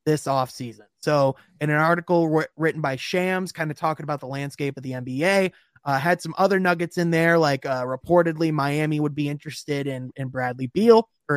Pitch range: 135-165 Hz